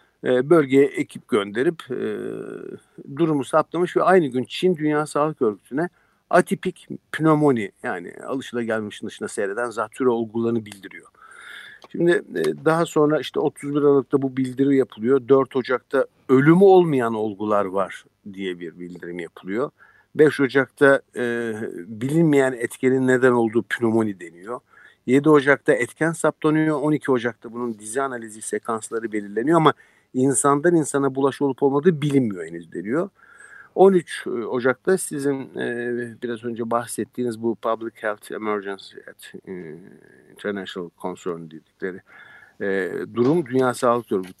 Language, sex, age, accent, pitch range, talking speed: Turkish, male, 50-69, native, 115-145 Hz, 125 wpm